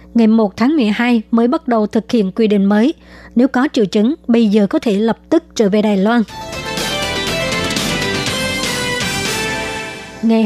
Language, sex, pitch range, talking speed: Vietnamese, male, 215-245 Hz, 155 wpm